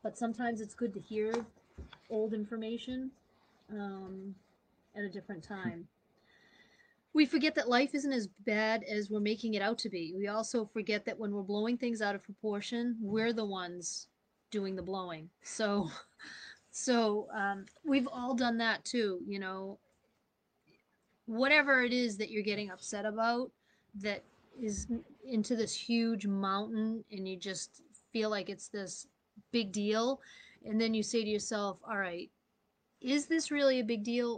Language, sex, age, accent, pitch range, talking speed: English, female, 30-49, American, 195-230 Hz, 160 wpm